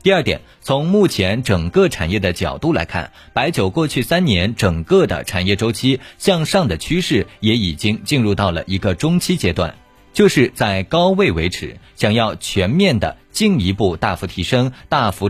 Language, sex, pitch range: Chinese, male, 95-155 Hz